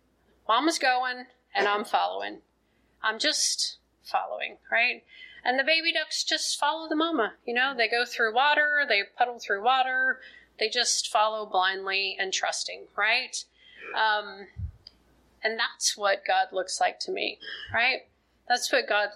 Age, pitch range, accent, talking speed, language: 30-49, 205-295 Hz, American, 145 wpm, English